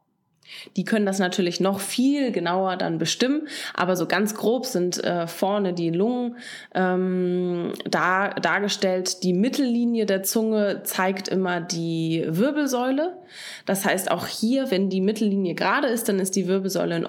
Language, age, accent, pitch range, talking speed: English, 20-39, German, 175-205 Hz, 150 wpm